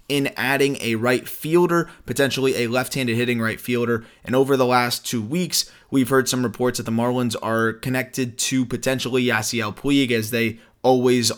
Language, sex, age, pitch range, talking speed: English, male, 20-39, 115-135 Hz, 175 wpm